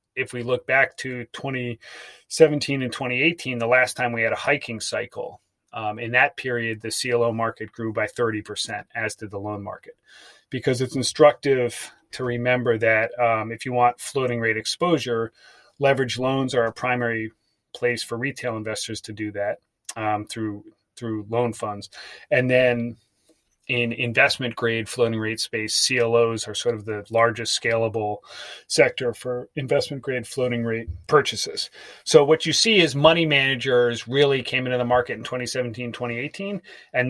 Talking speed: 155 wpm